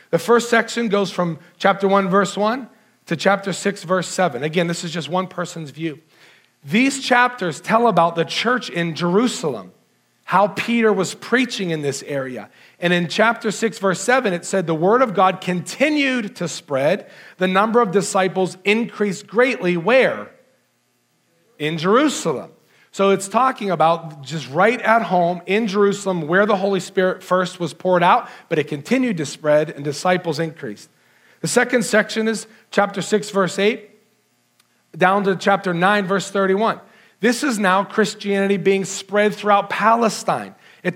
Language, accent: English, American